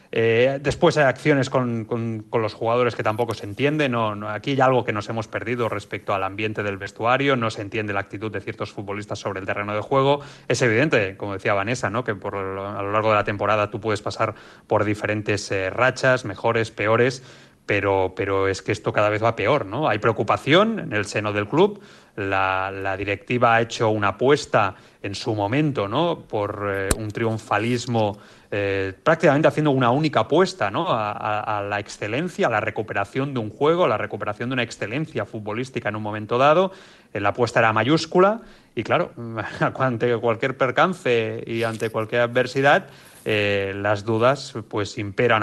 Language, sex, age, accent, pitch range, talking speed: Spanish, male, 30-49, Spanish, 105-130 Hz, 190 wpm